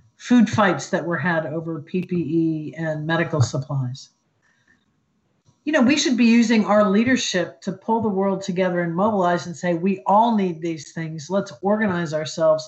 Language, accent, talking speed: English, American, 165 wpm